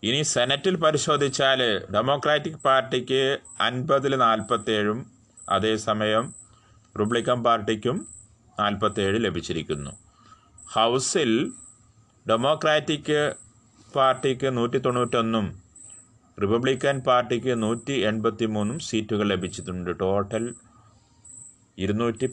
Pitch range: 105-130 Hz